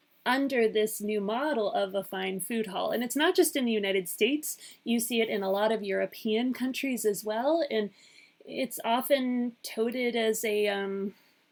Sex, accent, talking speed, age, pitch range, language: female, American, 180 wpm, 30-49, 210-275 Hz, English